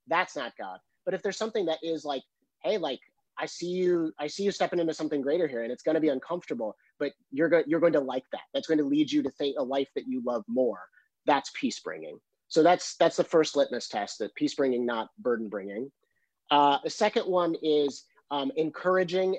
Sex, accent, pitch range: male, American, 135-175 Hz